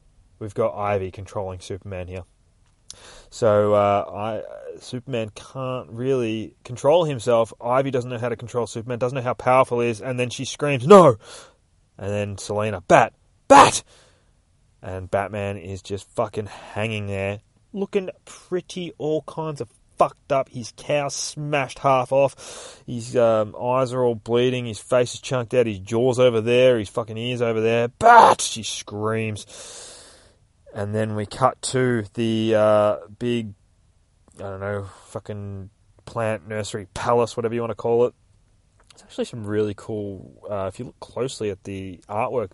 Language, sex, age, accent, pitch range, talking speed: English, male, 20-39, Australian, 100-125 Hz, 160 wpm